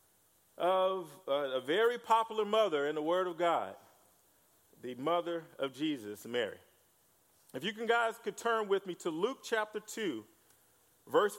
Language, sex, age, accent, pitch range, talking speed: English, male, 40-59, American, 165-245 Hz, 150 wpm